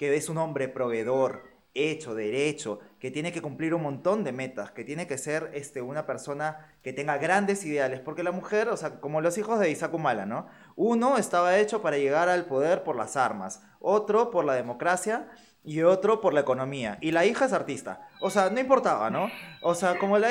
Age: 20-39